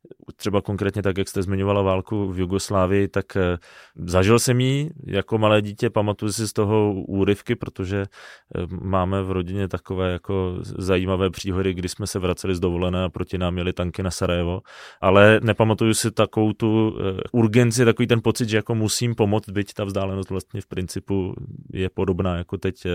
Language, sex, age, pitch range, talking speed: Czech, male, 20-39, 95-110 Hz, 170 wpm